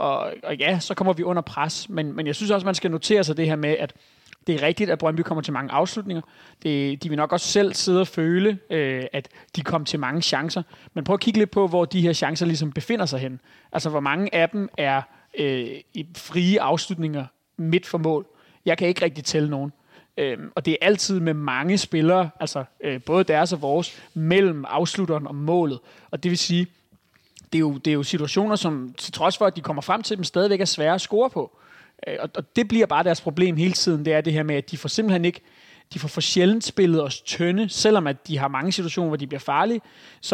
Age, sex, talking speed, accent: 30-49, male, 235 wpm, native